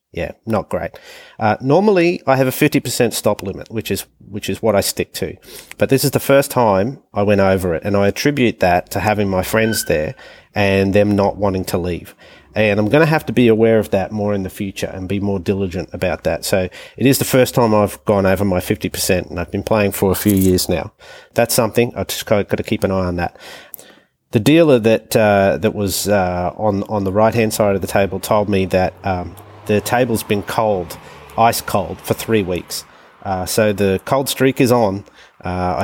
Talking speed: 220 wpm